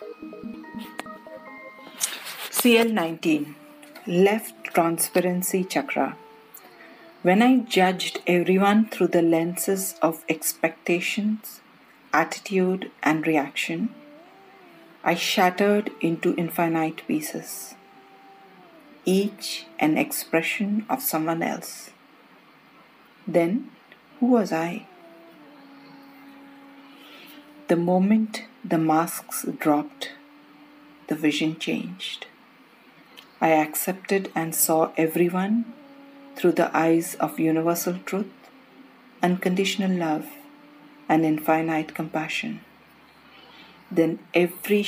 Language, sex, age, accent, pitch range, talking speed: English, female, 50-69, Indian, 165-235 Hz, 80 wpm